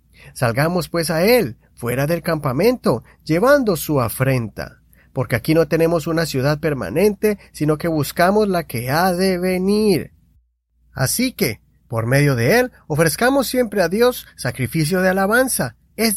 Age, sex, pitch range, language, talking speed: 30-49, male, 130-190 Hz, Spanish, 145 wpm